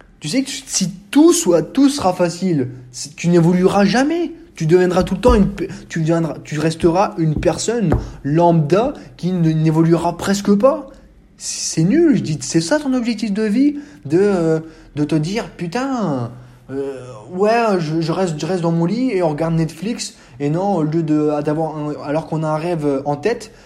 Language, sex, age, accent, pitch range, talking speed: French, male, 20-39, French, 140-185 Hz, 185 wpm